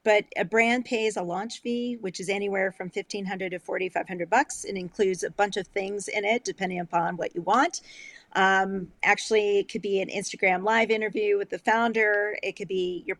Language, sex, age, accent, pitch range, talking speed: English, female, 40-59, American, 185-220 Hz, 195 wpm